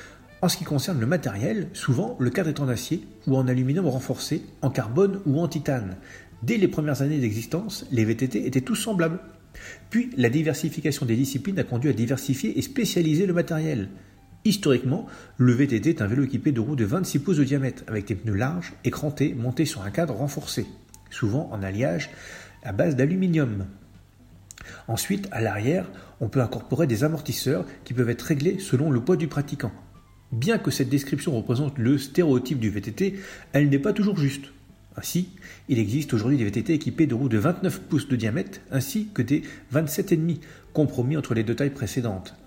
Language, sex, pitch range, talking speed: French, male, 115-155 Hz, 185 wpm